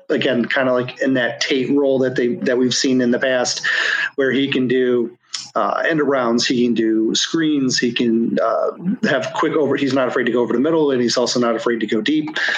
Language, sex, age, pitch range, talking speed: English, male, 40-59, 120-140 Hz, 240 wpm